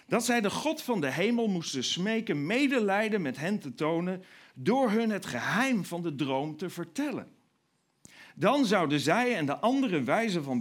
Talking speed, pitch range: 175 wpm, 155-235 Hz